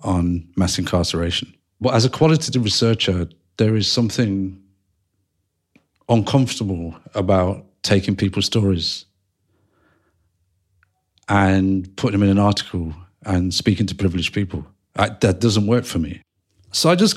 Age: 40-59